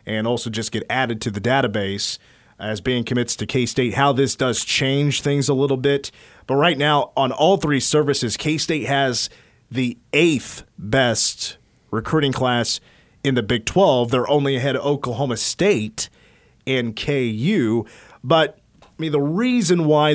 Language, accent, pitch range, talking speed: English, American, 120-150 Hz, 165 wpm